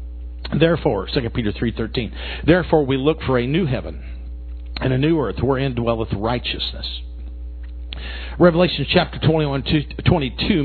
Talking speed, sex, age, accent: 125 wpm, male, 50-69, American